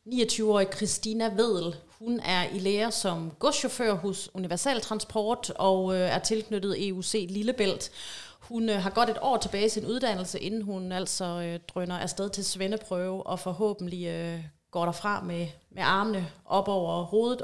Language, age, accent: Danish, 30-49, native